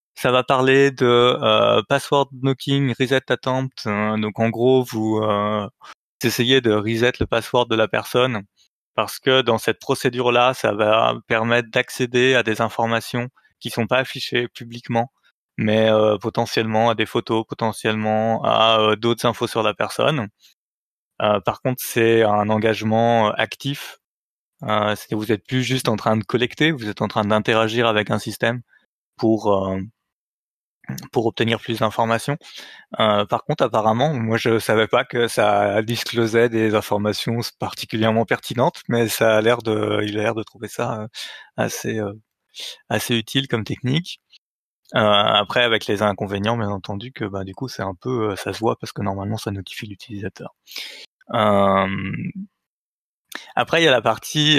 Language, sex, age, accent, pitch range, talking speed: French, male, 20-39, French, 110-125 Hz, 160 wpm